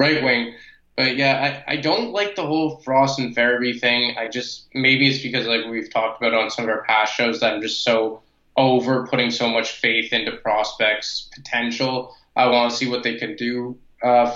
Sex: male